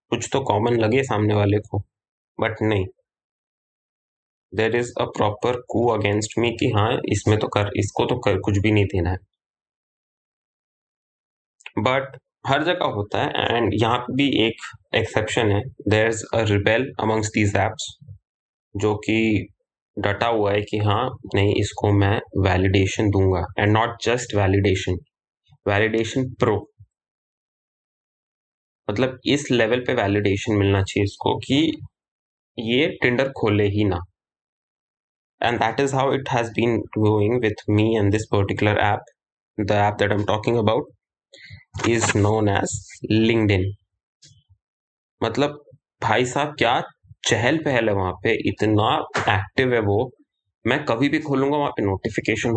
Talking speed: 115 wpm